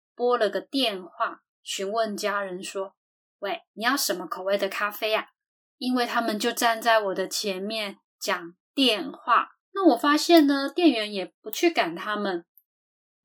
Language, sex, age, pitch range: Chinese, female, 10-29, 200-275 Hz